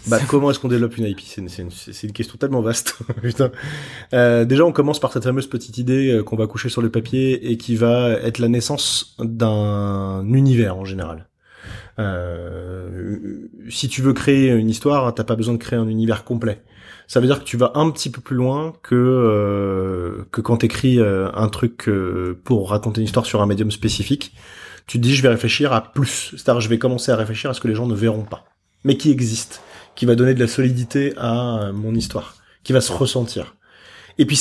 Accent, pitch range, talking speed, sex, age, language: French, 110-130 Hz, 215 wpm, male, 20-39, French